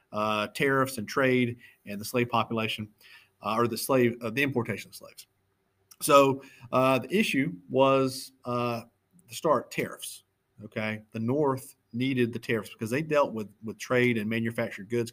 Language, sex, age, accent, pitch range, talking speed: English, male, 40-59, American, 105-125 Hz, 165 wpm